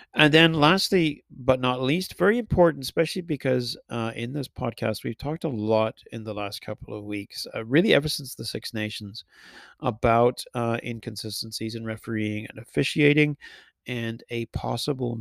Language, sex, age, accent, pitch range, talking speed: English, male, 40-59, American, 110-135 Hz, 160 wpm